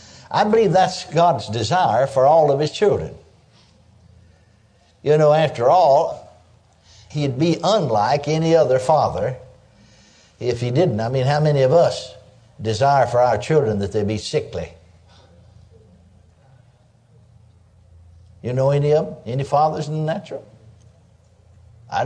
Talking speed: 130 wpm